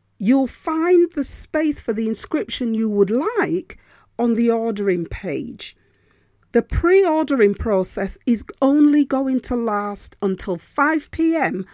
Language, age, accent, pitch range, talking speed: English, 40-59, British, 190-280 Hz, 125 wpm